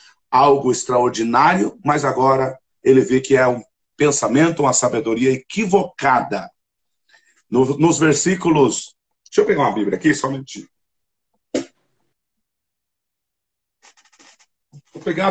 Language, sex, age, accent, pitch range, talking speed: Portuguese, male, 50-69, Brazilian, 130-190 Hz, 100 wpm